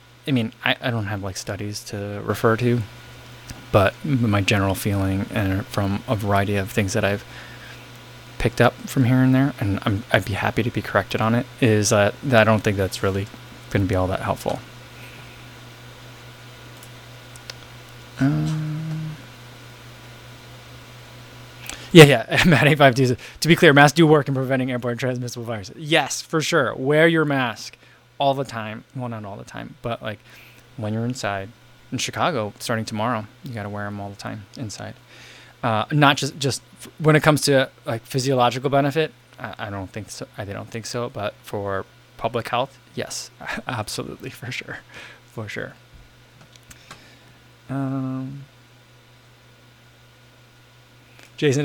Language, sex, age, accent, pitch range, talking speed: English, male, 20-39, American, 110-130 Hz, 155 wpm